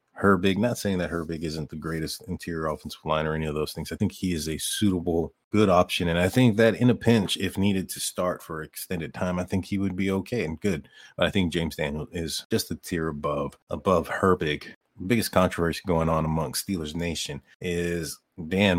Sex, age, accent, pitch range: male, 30-49, American, 80-105 Hz